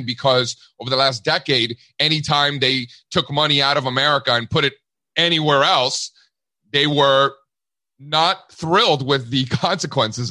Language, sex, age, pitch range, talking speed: English, male, 30-49, 130-170 Hz, 140 wpm